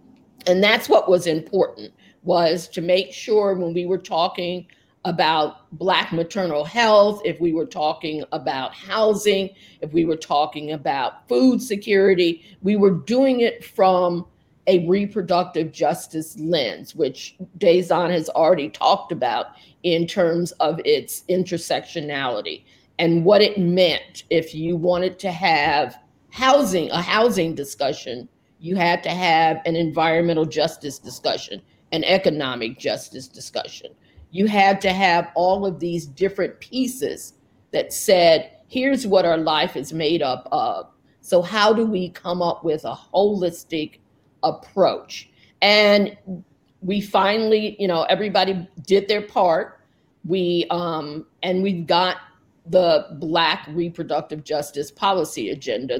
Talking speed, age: 135 wpm, 50-69